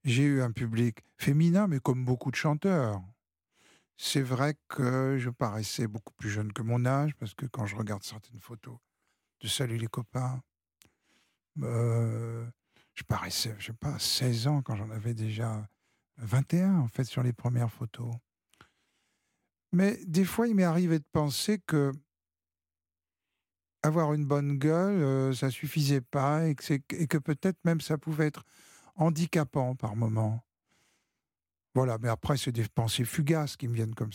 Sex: male